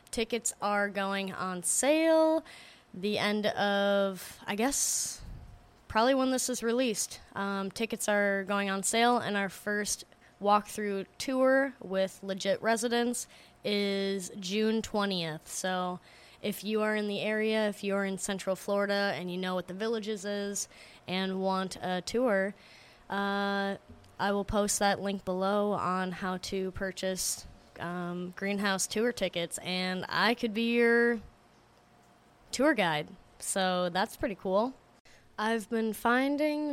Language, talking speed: English, 140 wpm